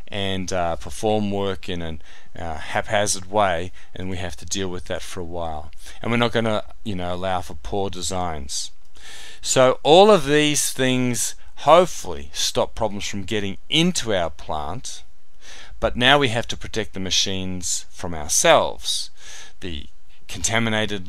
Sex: male